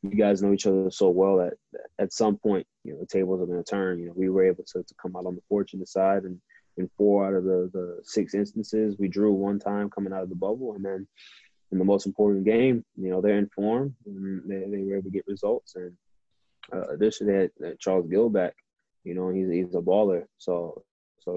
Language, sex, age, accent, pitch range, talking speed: English, male, 20-39, American, 90-100 Hz, 235 wpm